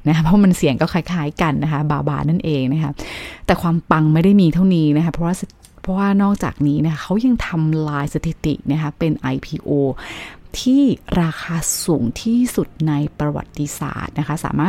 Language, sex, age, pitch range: Thai, female, 30-49, 150-190 Hz